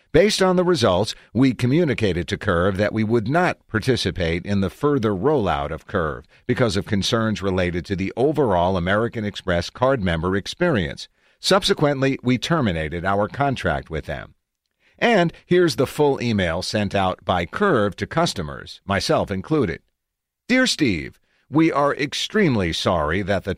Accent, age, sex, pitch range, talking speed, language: American, 50-69, male, 95-135 Hz, 150 wpm, English